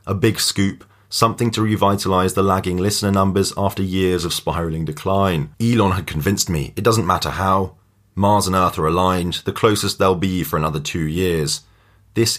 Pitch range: 95-115 Hz